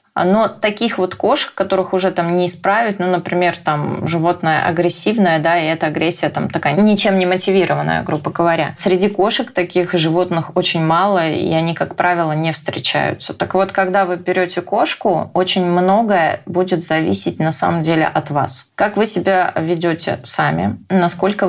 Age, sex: 20-39, female